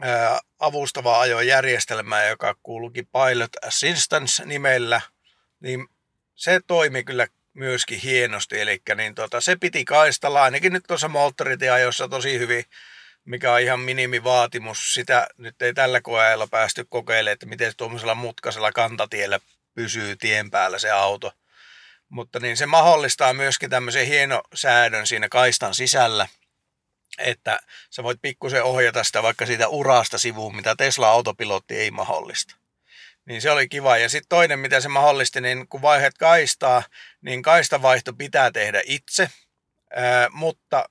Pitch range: 115-145 Hz